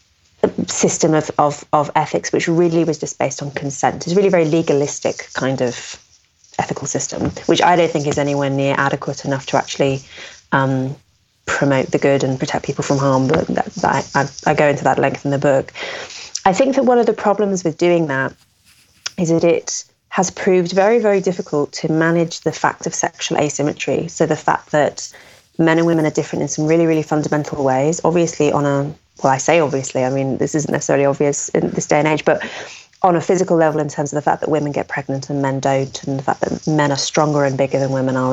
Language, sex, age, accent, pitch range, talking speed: English, female, 30-49, British, 135-165 Hz, 220 wpm